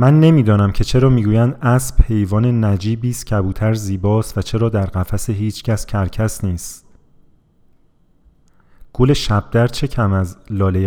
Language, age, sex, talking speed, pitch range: Persian, 30-49, male, 135 wpm, 95-125 Hz